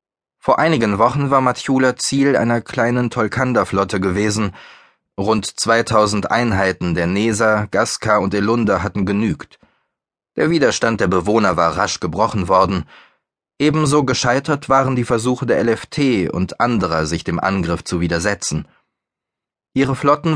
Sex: male